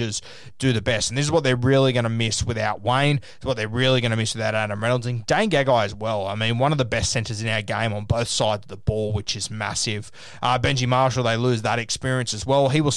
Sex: male